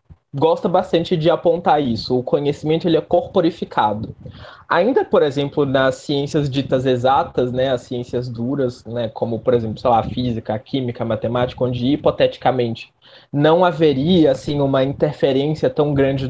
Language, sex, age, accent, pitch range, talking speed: Portuguese, male, 20-39, Brazilian, 125-160 Hz, 155 wpm